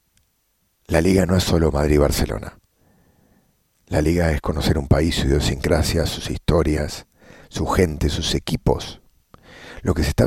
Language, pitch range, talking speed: English, 75-95 Hz, 140 wpm